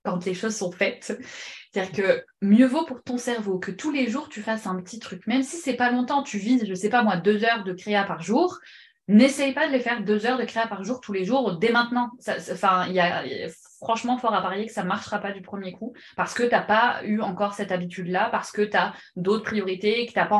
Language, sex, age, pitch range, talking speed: French, female, 20-39, 185-230 Hz, 275 wpm